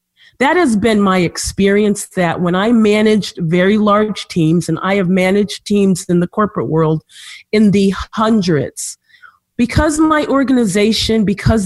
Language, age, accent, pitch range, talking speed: English, 40-59, American, 175-220 Hz, 145 wpm